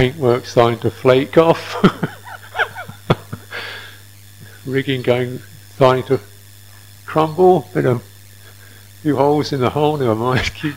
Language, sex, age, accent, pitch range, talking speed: English, male, 50-69, British, 100-120 Hz, 105 wpm